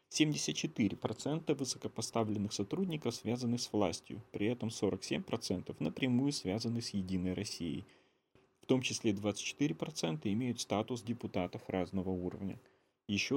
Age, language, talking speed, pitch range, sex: 30-49, Russian, 105 wpm, 105-130 Hz, male